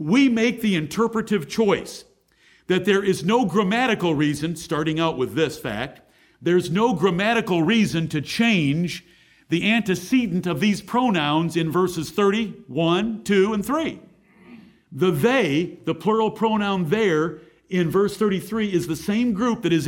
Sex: male